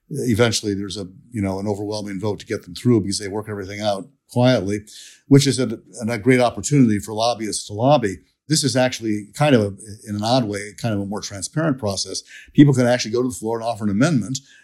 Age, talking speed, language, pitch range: 50-69, 220 wpm, English, 105-130 Hz